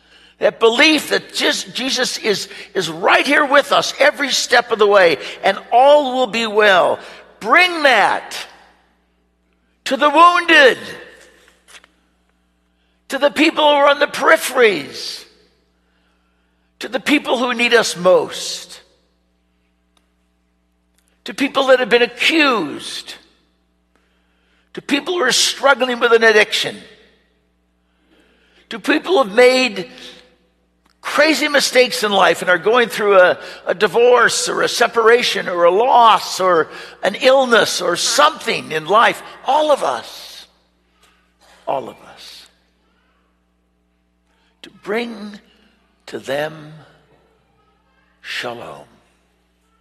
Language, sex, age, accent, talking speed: English, male, 60-79, American, 115 wpm